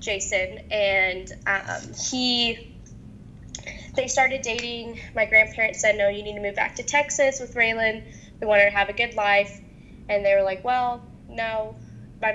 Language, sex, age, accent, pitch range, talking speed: English, female, 10-29, American, 195-225 Hz, 165 wpm